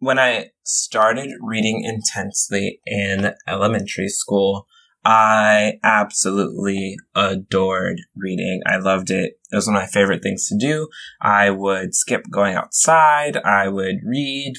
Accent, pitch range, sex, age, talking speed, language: American, 100-135 Hz, male, 20-39, 130 wpm, English